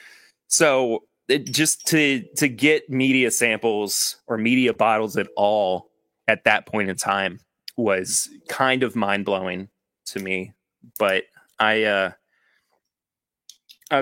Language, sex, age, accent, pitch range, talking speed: English, male, 30-49, American, 100-135 Hz, 125 wpm